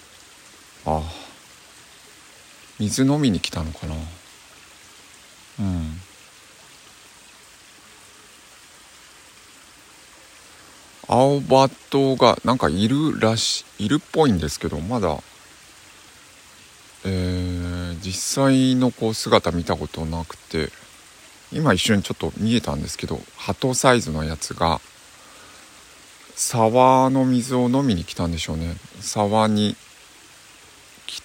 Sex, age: male, 50-69